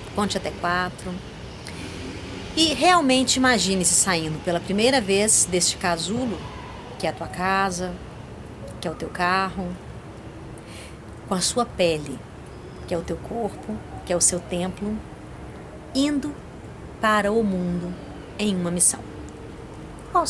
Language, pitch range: Portuguese, 170-210 Hz